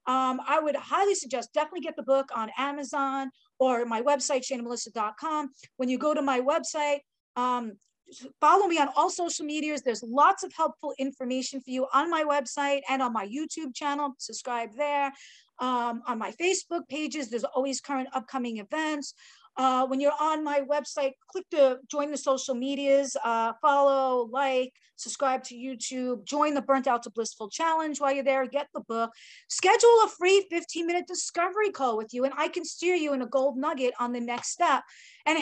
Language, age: English, 40-59